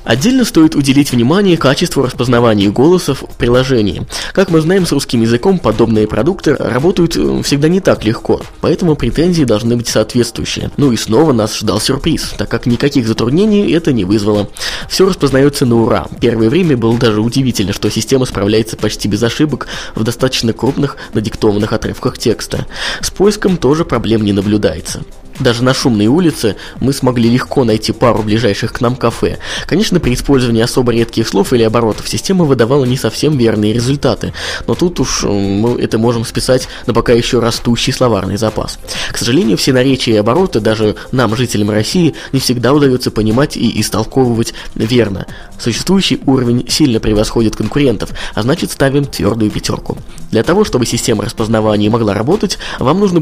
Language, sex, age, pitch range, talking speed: Russian, male, 20-39, 110-140 Hz, 160 wpm